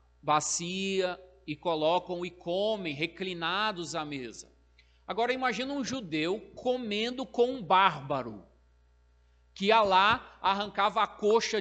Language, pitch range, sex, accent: Portuguese, 145-210 Hz, male, Brazilian